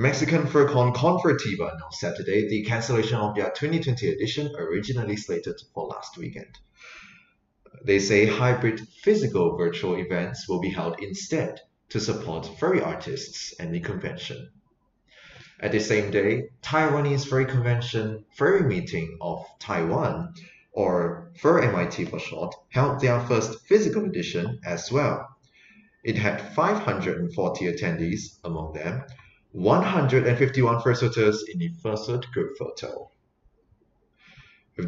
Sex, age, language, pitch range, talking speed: male, 30-49, English, 105-140 Hz, 120 wpm